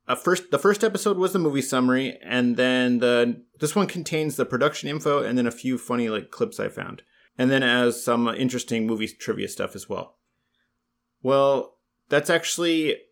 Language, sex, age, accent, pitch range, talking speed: English, male, 30-49, American, 115-145 Hz, 185 wpm